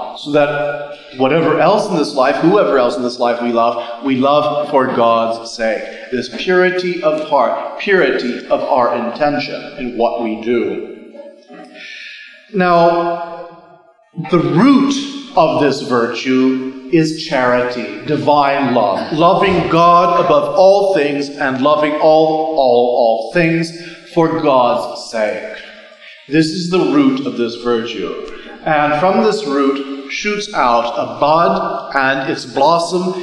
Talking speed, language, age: 130 wpm, English, 40-59